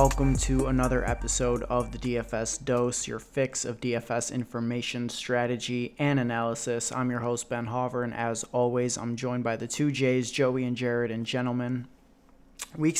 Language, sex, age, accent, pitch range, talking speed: English, male, 20-39, American, 115-125 Hz, 165 wpm